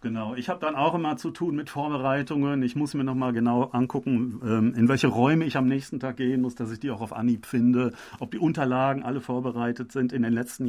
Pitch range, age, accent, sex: 120-135 Hz, 40-59, German, male